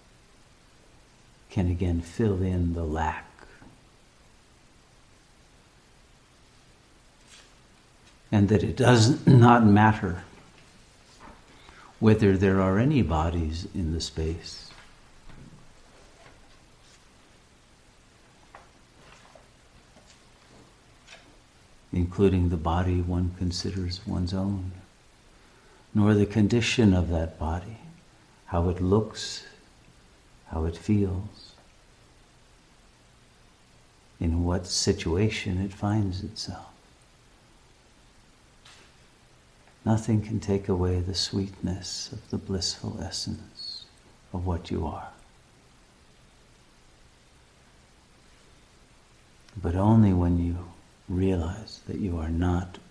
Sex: male